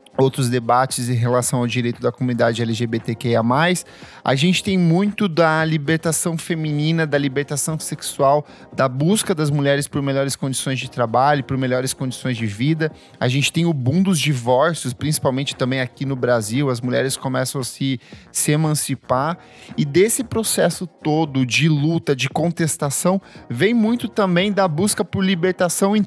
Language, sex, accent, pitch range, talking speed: Portuguese, male, Brazilian, 130-170 Hz, 155 wpm